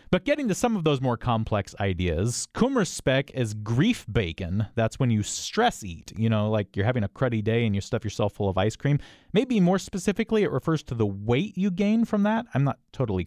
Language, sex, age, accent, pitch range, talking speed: English, male, 30-49, American, 105-155 Hz, 220 wpm